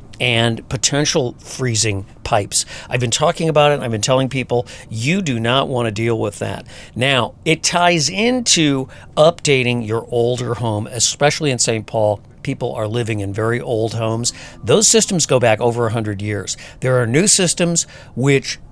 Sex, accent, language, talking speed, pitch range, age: male, American, English, 170 wpm, 110-135 Hz, 50-69